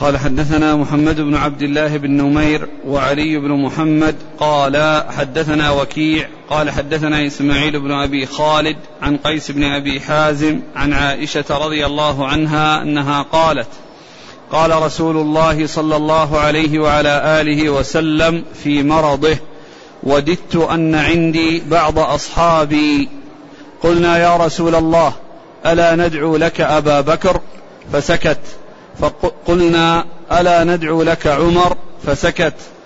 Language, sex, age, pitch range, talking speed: Arabic, male, 40-59, 150-170 Hz, 115 wpm